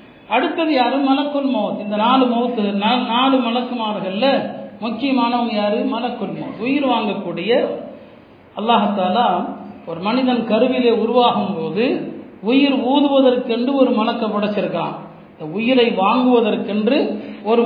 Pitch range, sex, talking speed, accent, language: 210-250 Hz, male, 60 wpm, native, Tamil